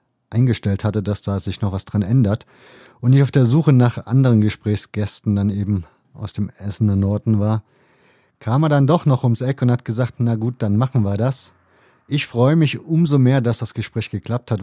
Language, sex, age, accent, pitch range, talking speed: German, male, 30-49, German, 110-135 Hz, 210 wpm